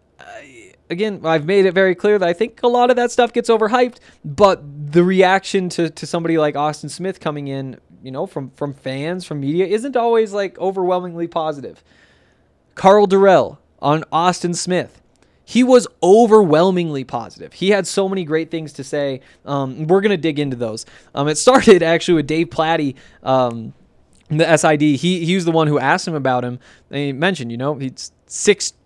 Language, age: English, 20-39